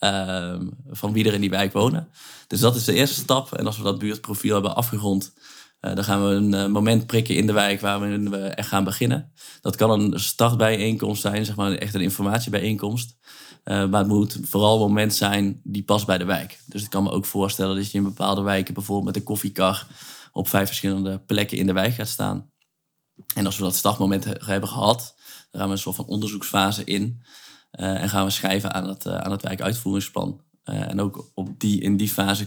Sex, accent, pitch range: male, Dutch, 95-110 Hz